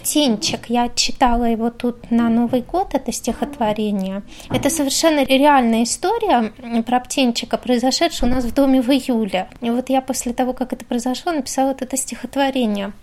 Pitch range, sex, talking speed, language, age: 225-275 Hz, female, 150 wpm, Russian, 20-39